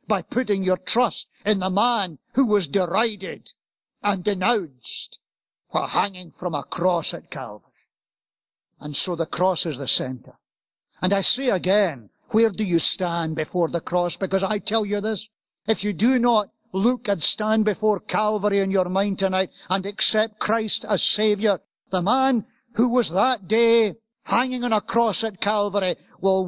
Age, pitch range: 60-79, 190-240 Hz